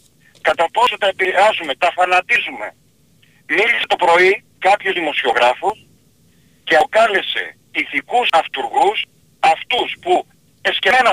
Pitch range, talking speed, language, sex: 175-230 Hz, 95 wpm, Greek, male